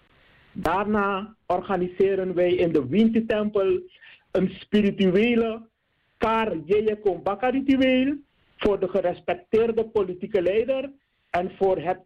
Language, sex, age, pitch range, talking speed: Dutch, male, 50-69, 190-240 Hz, 95 wpm